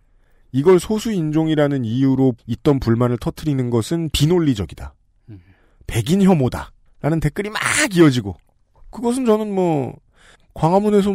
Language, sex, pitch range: Korean, male, 110-180 Hz